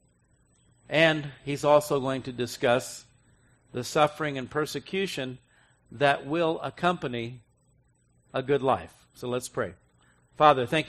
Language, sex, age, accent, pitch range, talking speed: English, male, 50-69, American, 125-160 Hz, 115 wpm